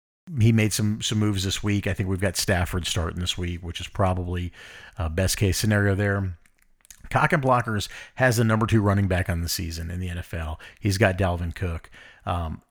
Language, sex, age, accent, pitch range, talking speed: English, male, 40-59, American, 95-115 Hz, 200 wpm